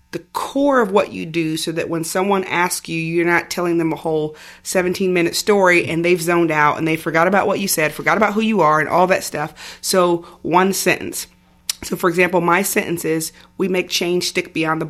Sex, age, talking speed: female, 30-49, 220 wpm